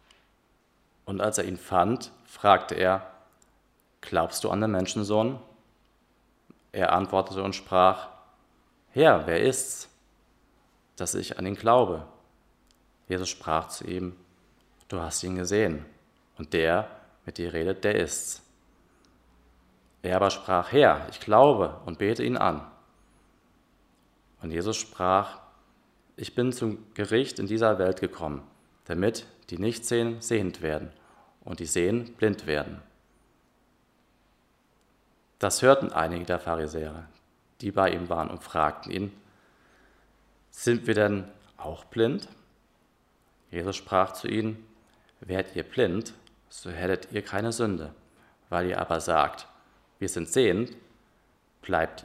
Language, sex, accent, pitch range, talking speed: German, male, German, 85-110 Hz, 125 wpm